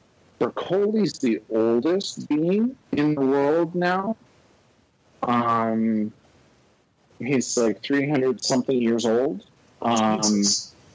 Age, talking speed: 40-59, 95 wpm